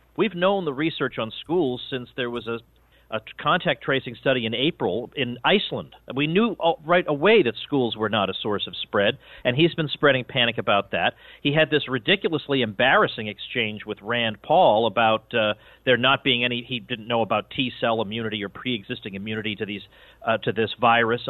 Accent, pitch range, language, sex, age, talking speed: American, 115-160 Hz, English, male, 40-59, 185 wpm